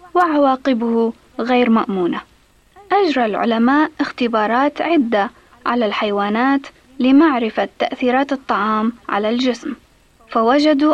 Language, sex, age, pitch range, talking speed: Arabic, female, 20-39, 230-305 Hz, 80 wpm